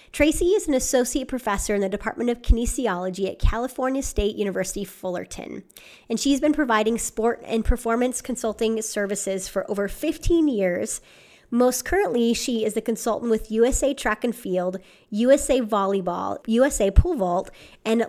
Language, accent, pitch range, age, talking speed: English, American, 205-255 Hz, 30-49, 150 wpm